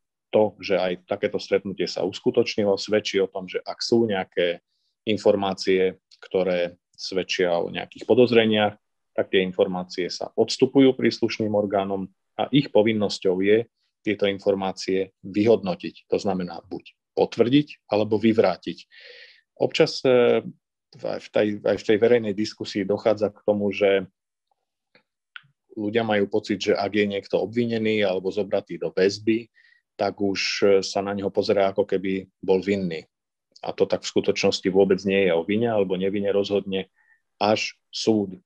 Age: 40-59